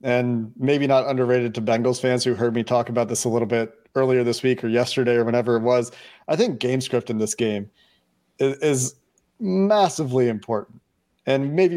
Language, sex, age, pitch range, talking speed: English, male, 40-59, 115-135 Hz, 190 wpm